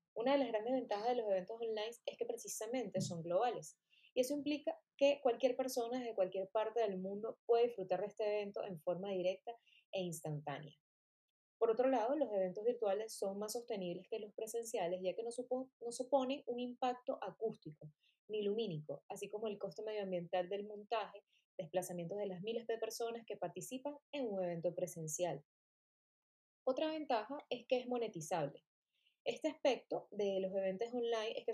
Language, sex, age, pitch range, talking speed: Spanish, female, 20-39, 190-250 Hz, 170 wpm